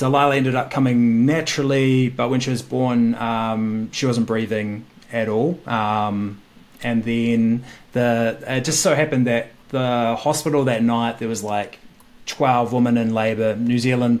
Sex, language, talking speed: male, English, 160 wpm